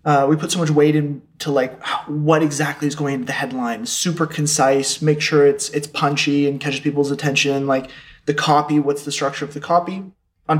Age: 20-39